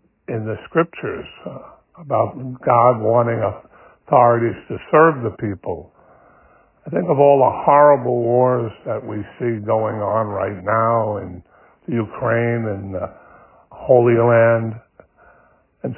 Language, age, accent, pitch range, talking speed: English, 60-79, American, 105-125 Hz, 130 wpm